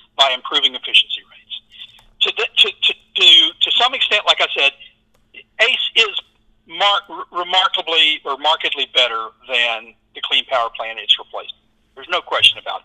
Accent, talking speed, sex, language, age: American, 155 wpm, male, English, 50-69